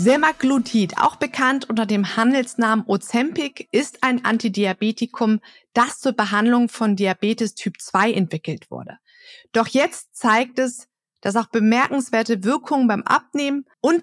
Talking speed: 130 wpm